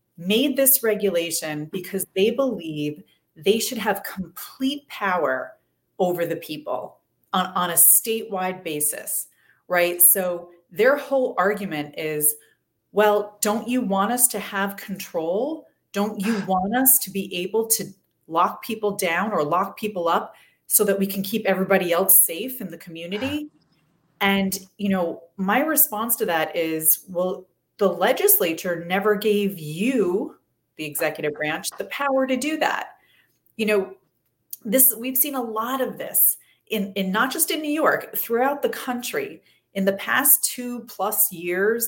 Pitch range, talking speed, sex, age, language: 175-235 Hz, 150 wpm, female, 30-49, English